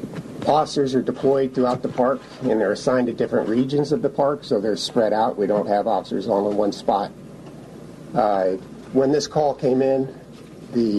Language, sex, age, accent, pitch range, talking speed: English, male, 50-69, American, 110-135 Hz, 185 wpm